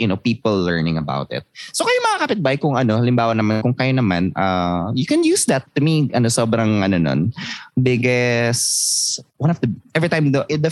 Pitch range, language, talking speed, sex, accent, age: 95-135 Hz, Filipino, 205 wpm, male, native, 20-39